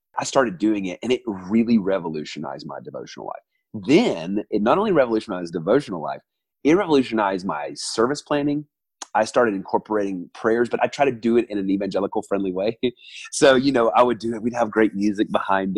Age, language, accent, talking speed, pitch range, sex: 30-49, English, American, 185 wpm, 110-170 Hz, male